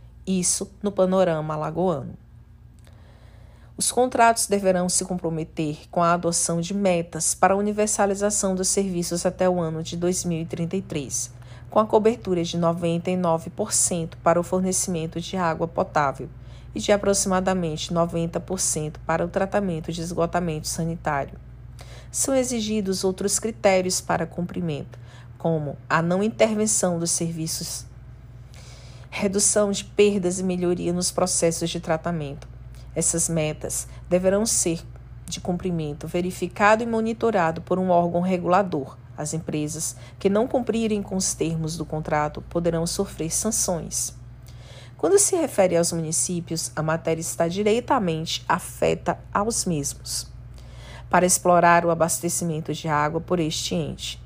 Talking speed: 125 wpm